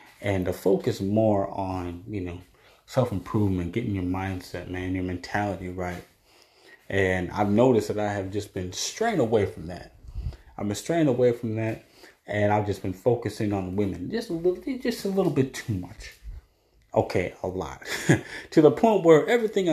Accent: American